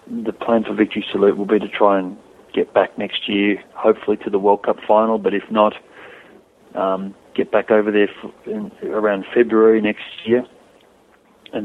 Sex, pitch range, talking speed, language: male, 95-110 Hz, 180 wpm, English